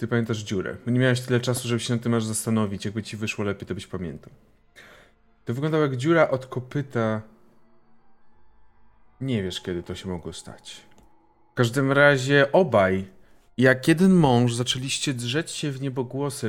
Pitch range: 115-145 Hz